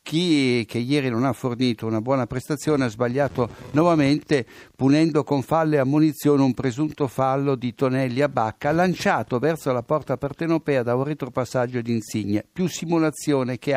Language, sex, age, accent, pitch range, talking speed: Italian, male, 60-79, native, 125-150 Hz, 160 wpm